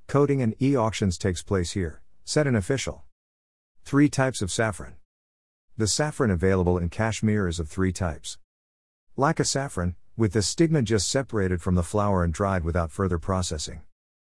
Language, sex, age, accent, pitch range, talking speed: English, male, 50-69, American, 85-110 Hz, 155 wpm